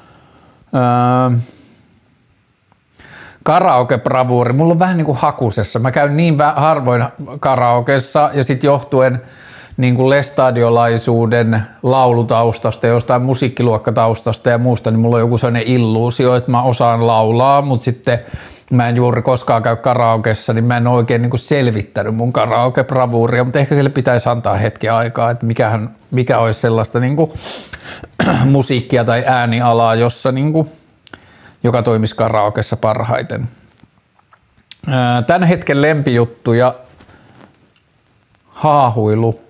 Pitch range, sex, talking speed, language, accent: 115-130 Hz, male, 105 wpm, Finnish, native